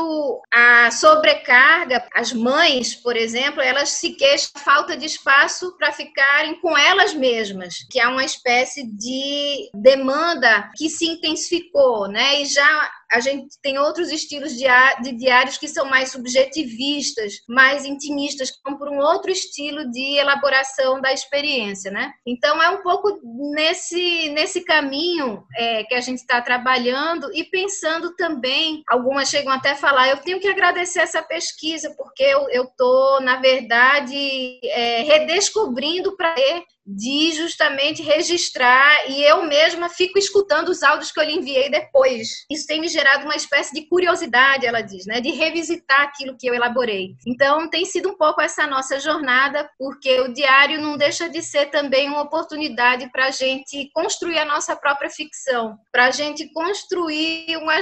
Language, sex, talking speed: Portuguese, female, 160 wpm